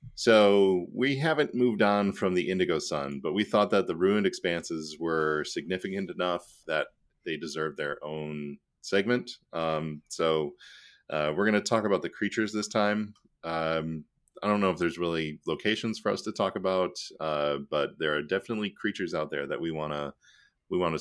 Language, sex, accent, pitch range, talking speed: English, male, American, 75-105 Hz, 185 wpm